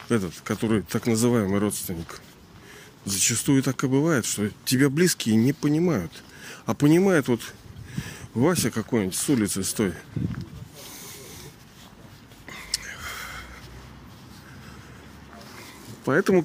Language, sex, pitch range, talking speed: Russian, male, 115-150 Hz, 85 wpm